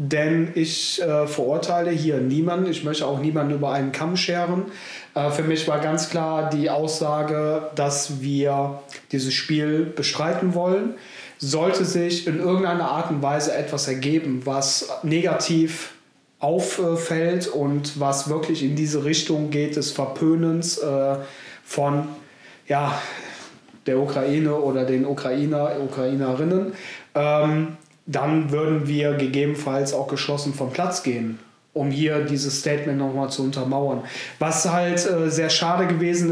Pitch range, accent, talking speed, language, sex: 140-165 Hz, German, 135 wpm, German, male